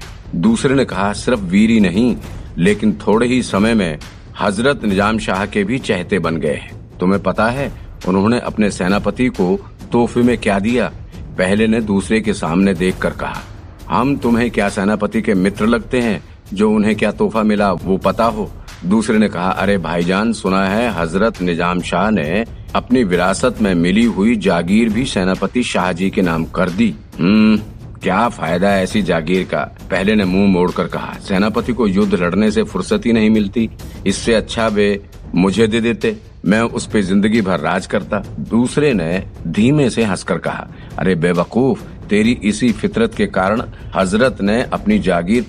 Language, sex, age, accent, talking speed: Hindi, male, 50-69, native, 170 wpm